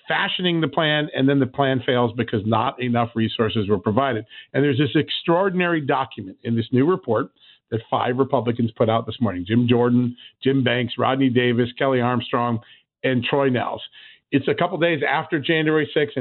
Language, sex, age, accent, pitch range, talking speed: English, male, 50-69, American, 125-155 Hz, 180 wpm